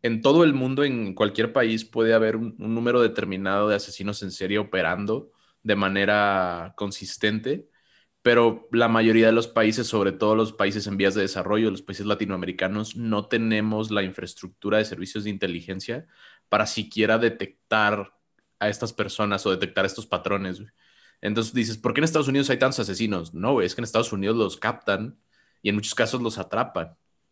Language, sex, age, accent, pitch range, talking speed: Spanish, male, 20-39, Mexican, 100-115 Hz, 175 wpm